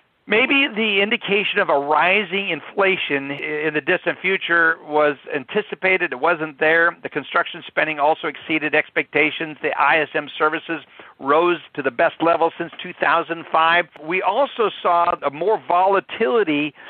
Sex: male